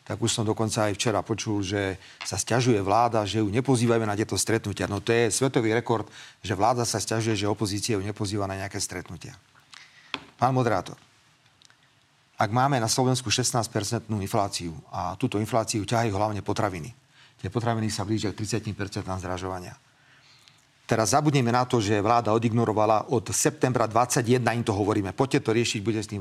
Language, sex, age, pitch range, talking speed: Slovak, male, 40-59, 105-130 Hz, 165 wpm